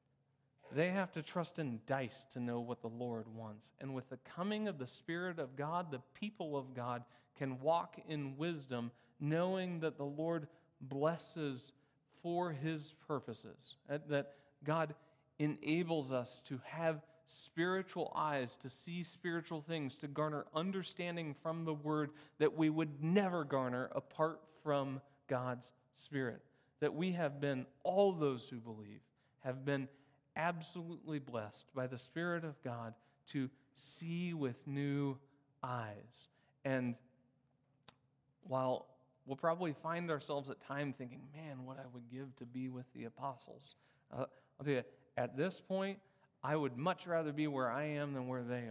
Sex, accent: male, American